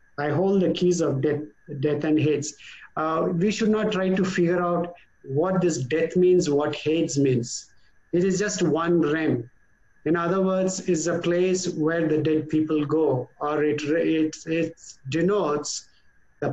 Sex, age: male, 50-69